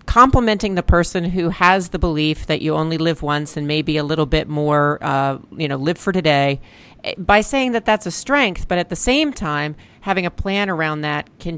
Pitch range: 155-225 Hz